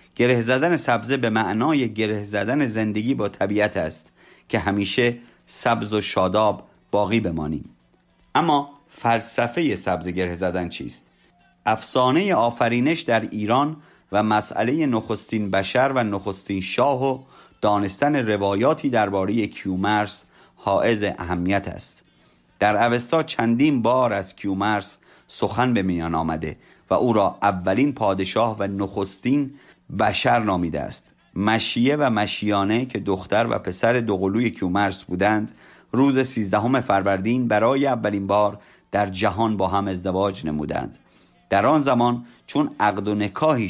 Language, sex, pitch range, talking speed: Persian, male, 95-120 Hz, 125 wpm